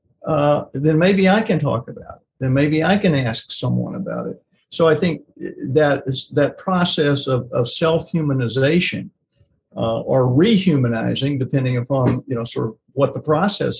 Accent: American